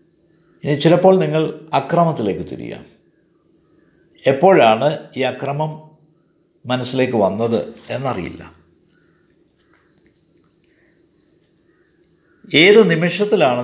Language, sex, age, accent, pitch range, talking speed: Malayalam, male, 50-69, native, 125-170 Hz, 55 wpm